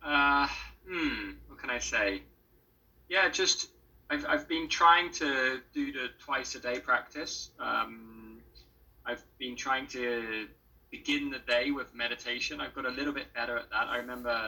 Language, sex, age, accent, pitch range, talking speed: English, male, 20-39, British, 105-150 Hz, 160 wpm